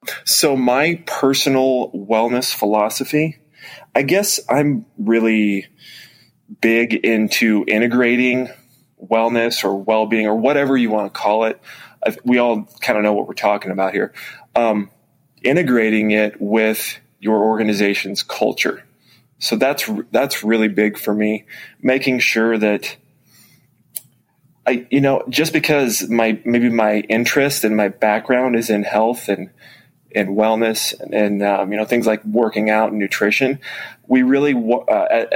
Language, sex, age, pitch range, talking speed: English, male, 20-39, 105-120 Hz, 135 wpm